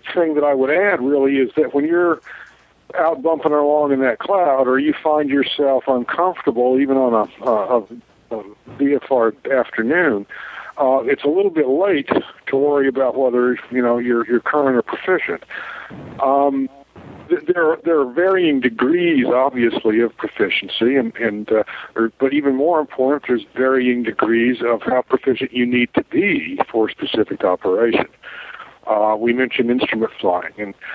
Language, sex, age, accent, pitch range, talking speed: English, male, 50-69, American, 125-155 Hz, 165 wpm